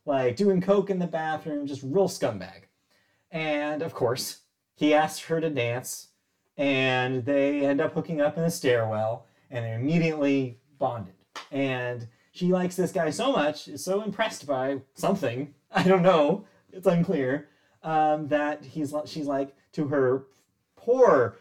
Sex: male